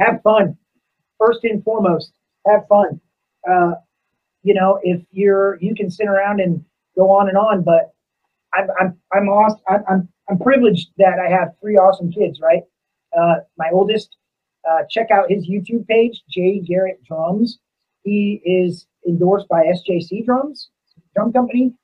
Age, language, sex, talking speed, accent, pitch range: 30-49, English, male, 155 wpm, American, 180-225 Hz